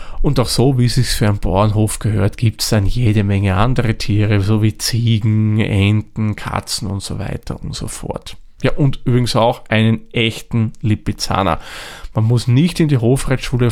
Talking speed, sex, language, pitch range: 180 wpm, male, German, 105-120 Hz